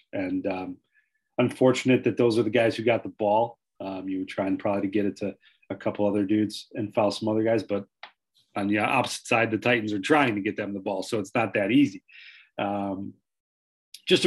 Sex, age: male, 40-59